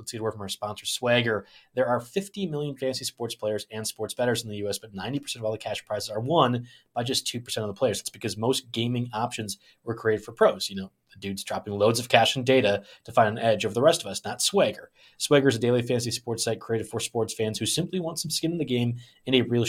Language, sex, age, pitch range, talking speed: English, male, 20-39, 110-135 Hz, 265 wpm